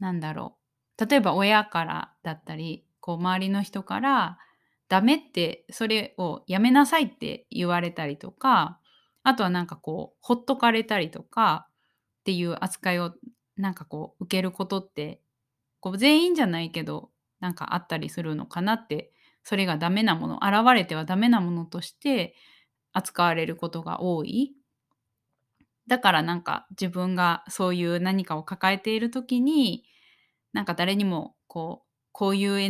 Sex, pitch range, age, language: female, 160-220 Hz, 20-39, Japanese